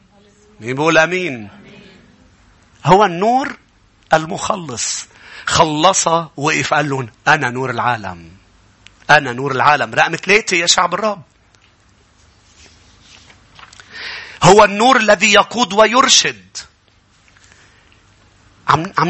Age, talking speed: 40-59, 80 wpm